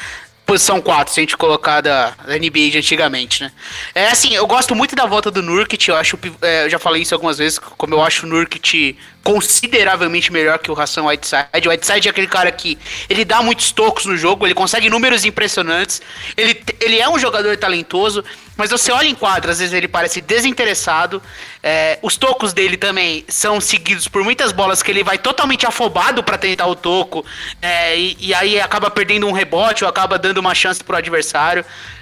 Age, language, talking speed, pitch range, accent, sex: 20-39, English, 195 wpm, 170-215 Hz, Brazilian, male